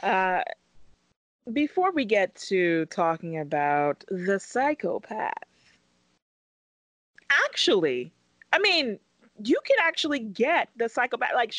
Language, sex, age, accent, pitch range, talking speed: English, female, 30-49, American, 170-275 Hz, 100 wpm